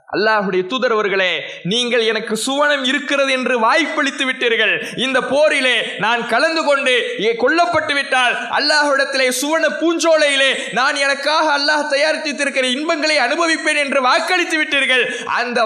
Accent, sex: Indian, male